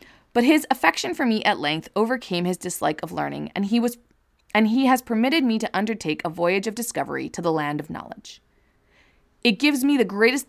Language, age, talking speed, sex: English, 20-39, 205 wpm, female